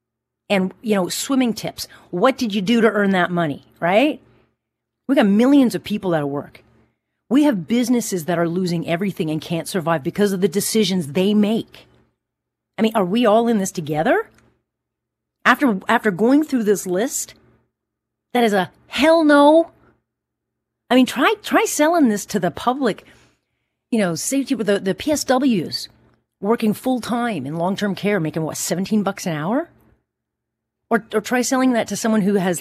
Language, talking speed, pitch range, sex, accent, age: English, 170 wpm, 160-225 Hz, female, American, 40-59